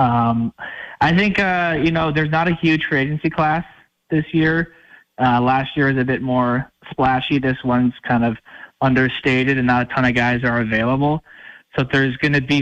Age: 20-39